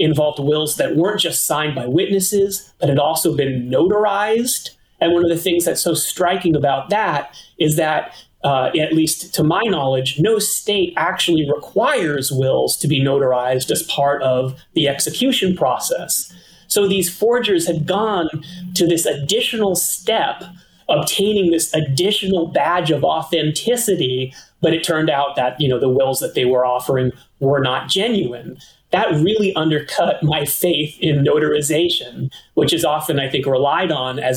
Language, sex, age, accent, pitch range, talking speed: English, male, 30-49, American, 145-190 Hz, 155 wpm